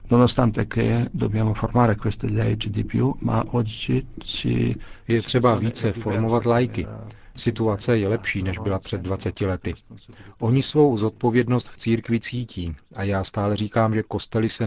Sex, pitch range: male, 95-115 Hz